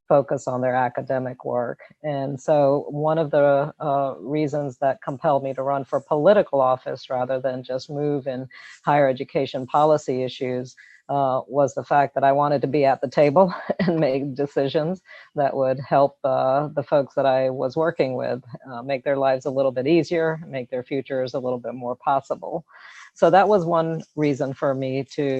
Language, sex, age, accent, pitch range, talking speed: English, female, 40-59, American, 135-160 Hz, 185 wpm